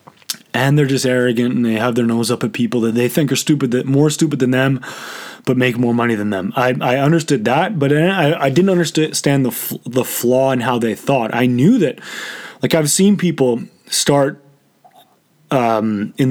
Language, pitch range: English, 120-140 Hz